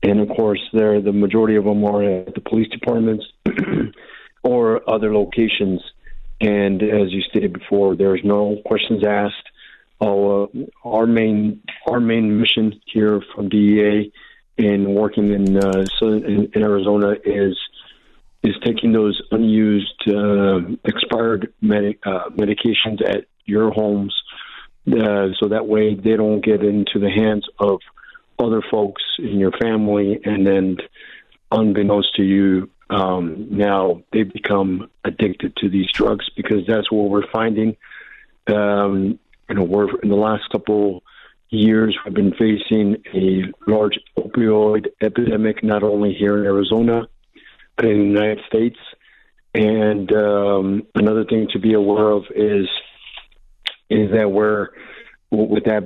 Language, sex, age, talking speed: English, male, 50-69, 135 wpm